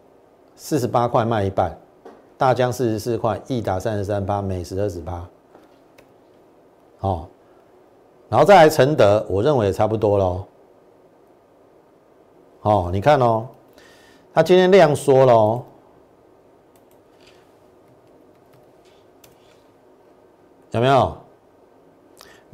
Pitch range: 95-130 Hz